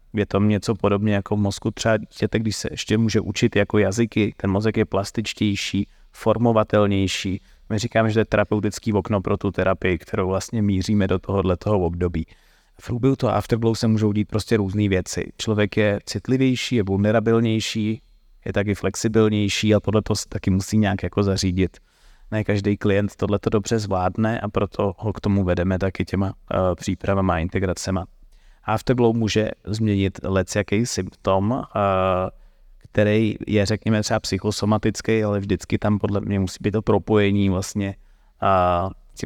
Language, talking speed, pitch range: Czech, 160 wpm, 95-110 Hz